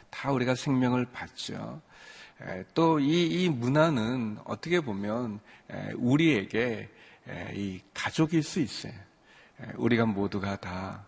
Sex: male